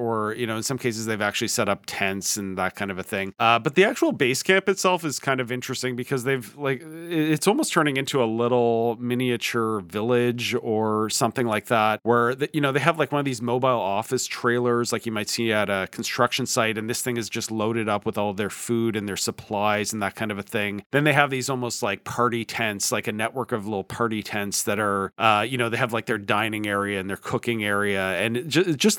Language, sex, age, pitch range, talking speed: English, male, 40-59, 100-125 Hz, 240 wpm